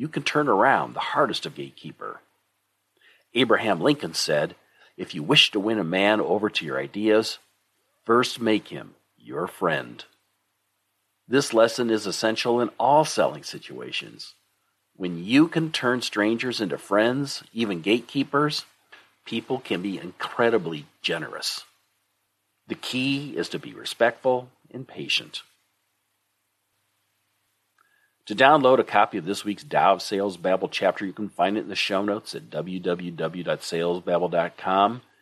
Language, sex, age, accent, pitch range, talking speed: English, male, 50-69, American, 100-125 Hz, 135 wpm